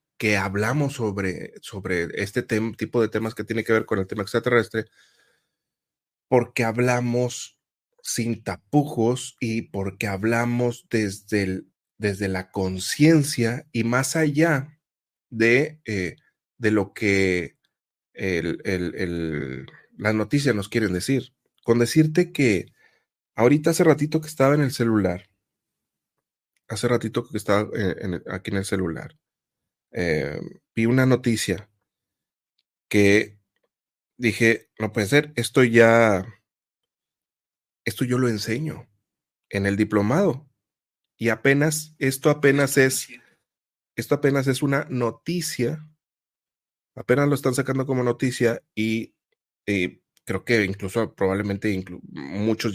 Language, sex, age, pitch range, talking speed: Spanish, male, 30-49, 100-135 Hz, 115 wpm